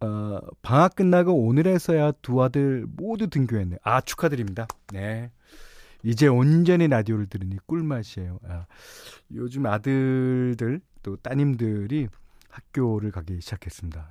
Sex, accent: male, native